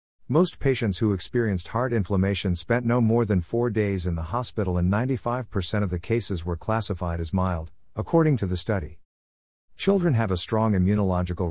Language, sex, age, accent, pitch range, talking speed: English, male, 50-69, American, 90-115 Hz, 170 wpm